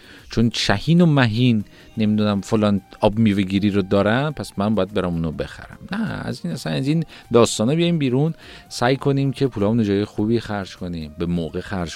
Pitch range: 85-115 Hz